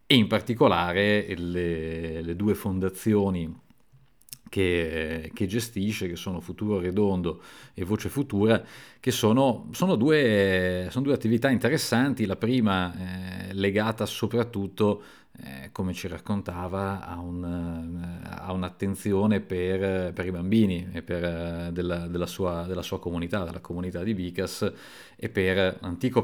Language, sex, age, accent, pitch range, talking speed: Italian, male, 40-59, native, 90-105 Hz, 135 wpm